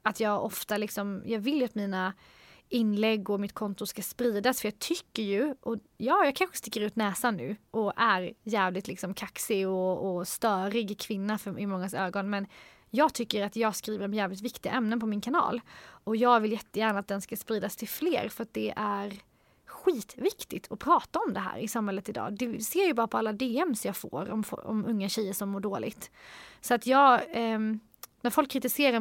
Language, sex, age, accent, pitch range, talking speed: Swedish, female, 30-49, native, 205-245 Hz, 205 wpm